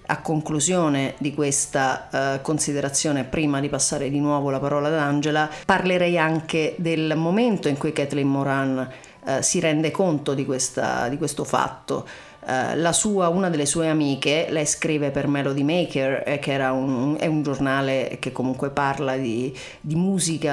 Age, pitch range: 40-59, 140-165 Hz